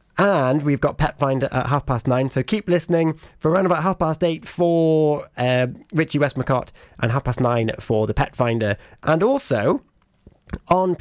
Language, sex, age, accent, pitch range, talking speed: English, male, 30-49, British, 130-170 Hz, 180 wpm